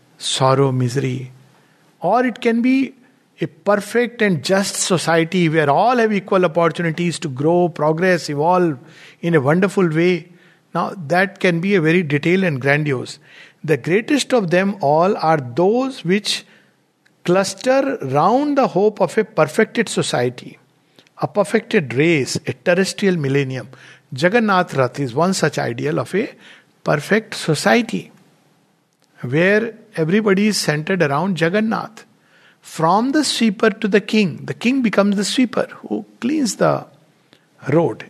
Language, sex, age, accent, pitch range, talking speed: English, male, 60-79, Indian, 150-205 Hz, 135 wpm